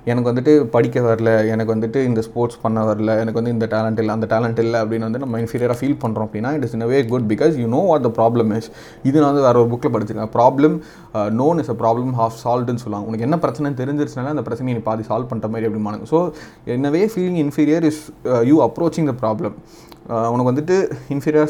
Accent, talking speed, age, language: native, 210 wpm, 30-49, Tamil